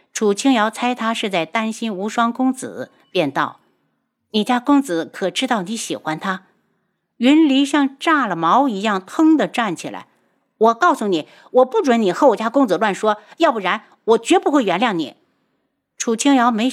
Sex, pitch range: female, 185-270 Hz